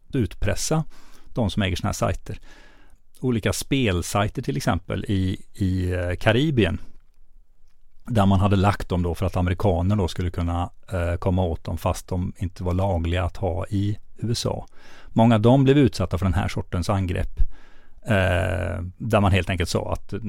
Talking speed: 165 wpm